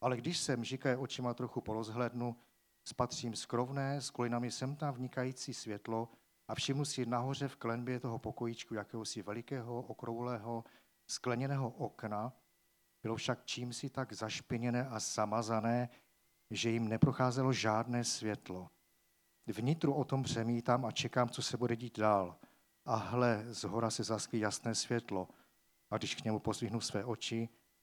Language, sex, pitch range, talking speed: Czech, male, 110-130 Hz, 140 wpm